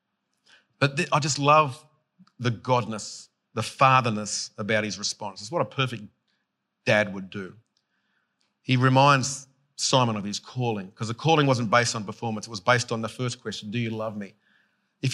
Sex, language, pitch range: male, English, 115-145 Hz